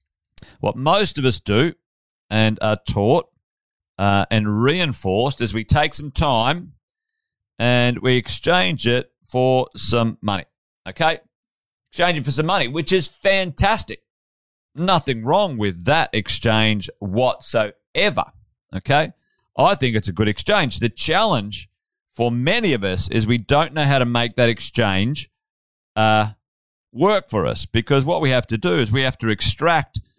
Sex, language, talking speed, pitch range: male, English, 150 wpm, 105-140 Hz